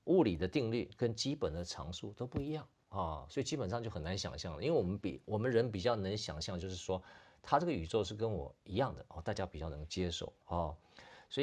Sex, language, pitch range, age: male, Chinese, 85-120 Hz, 50-69